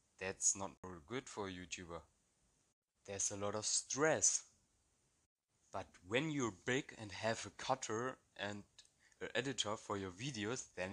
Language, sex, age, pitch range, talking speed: Amharic, male, 30-49, 95-115 Hz, 150 wpm